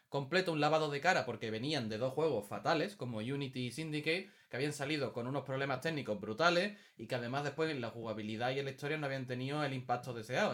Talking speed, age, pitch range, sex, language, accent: 230 wpm, 20-39, 130-175 Hz, male, Spanish, Spanish